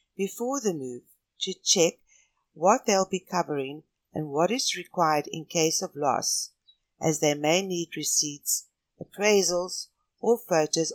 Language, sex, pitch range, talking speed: English, female, 155-210 Hz, 135 wpm